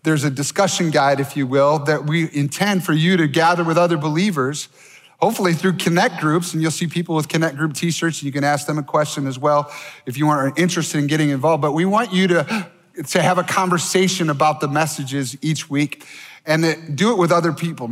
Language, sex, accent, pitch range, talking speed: English, male, American, 145-170 Hz, 220 wpm